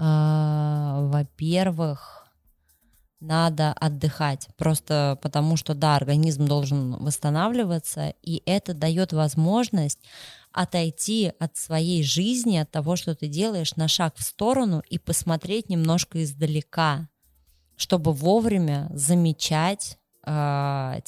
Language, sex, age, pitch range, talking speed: Russian, female, 20-39, 150-170 Hz, 100 wpm